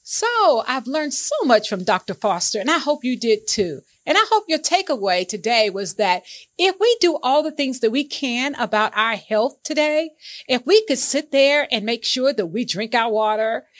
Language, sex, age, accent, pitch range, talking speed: English, female, 40-59, American, 210-290 Hz, 210 wpm